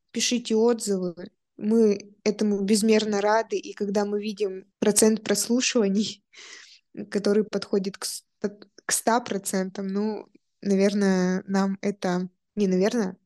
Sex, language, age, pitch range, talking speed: female, Russian, 20-39, 195-220 Hz, 100 wpm